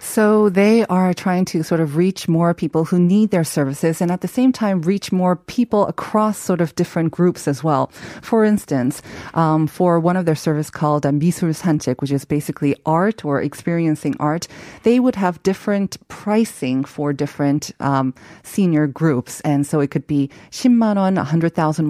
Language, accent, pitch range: Korean, American, 145-185 Hz